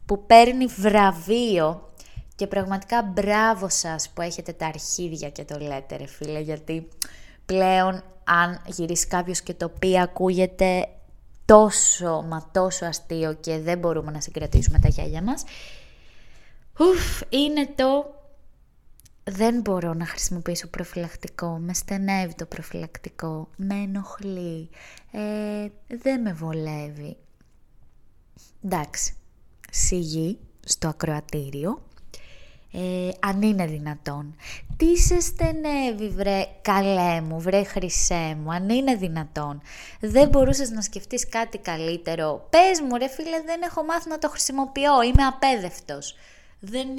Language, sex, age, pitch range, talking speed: Greek, female, 20-39, 165-225 Hz, 120 wpm